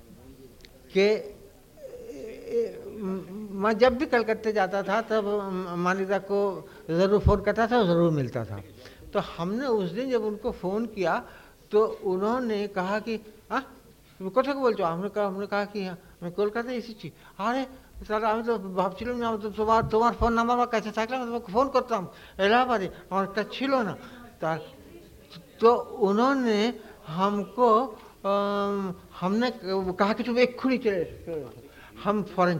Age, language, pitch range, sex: 60-79, Hindi, 180-230 Hz, male